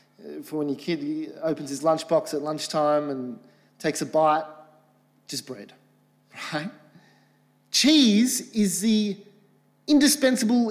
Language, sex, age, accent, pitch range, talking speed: English, male, 30-49, Australian, 155-195 Hz, 120 wpm